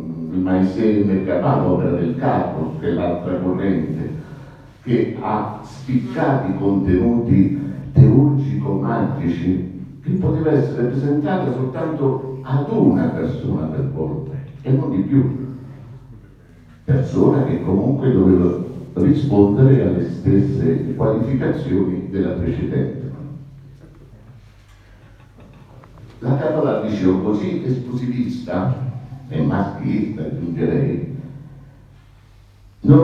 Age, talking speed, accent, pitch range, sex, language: 60-79, 85 wpm, native, 100-140 Hz, male, Italian